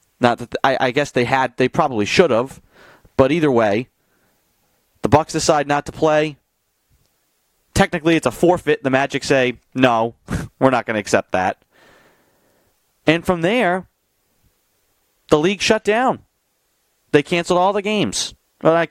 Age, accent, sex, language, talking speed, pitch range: 30-49, American, male, English, 150 wpm, 125-155 Hz